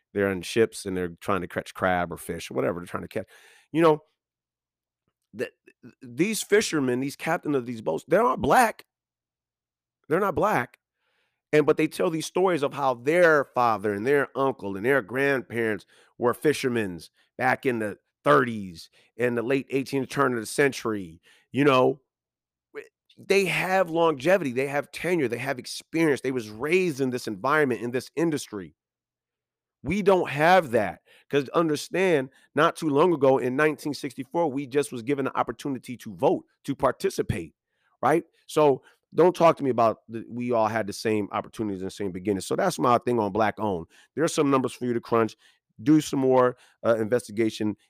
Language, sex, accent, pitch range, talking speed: English, male, American, 105-145 Hz, 180 wpm